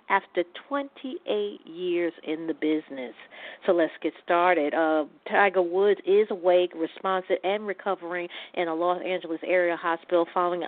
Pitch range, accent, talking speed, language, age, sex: 175-210 Hz, American, 135 wpm, English, 50-69, female